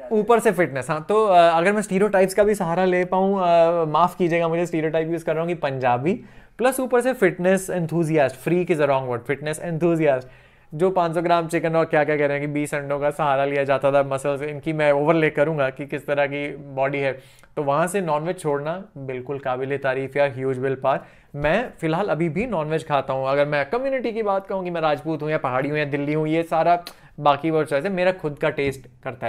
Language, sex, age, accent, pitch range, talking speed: Hindi, male, 20-39, native, 145-185 Hz, 225 wpm